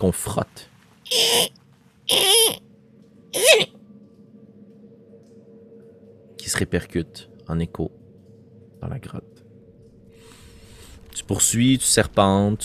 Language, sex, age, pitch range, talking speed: French, male, 30-49, 90-125 Hz, 65 wpm